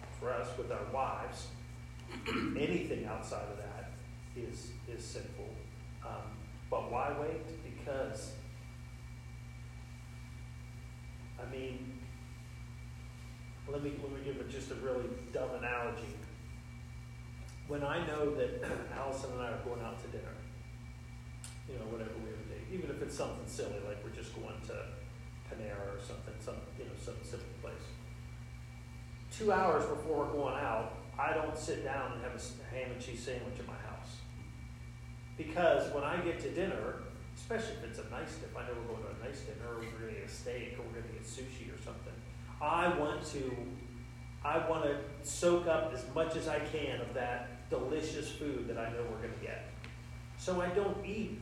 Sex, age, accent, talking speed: male, 40-59, American, 175 wpm